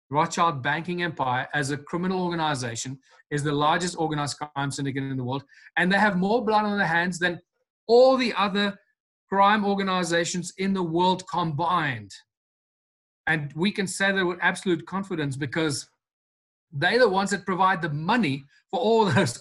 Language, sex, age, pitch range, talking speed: English, male, 30-49, 155-195 Hz, 165 wpm